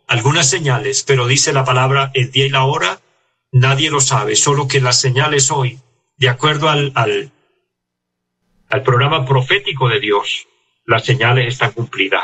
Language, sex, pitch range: Spanish, male, 120-135 Hz